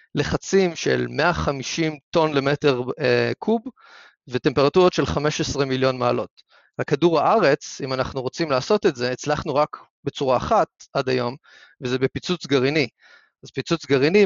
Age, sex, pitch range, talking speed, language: 30-49, male, 130-155 Hz, 135 wpm, Hebrew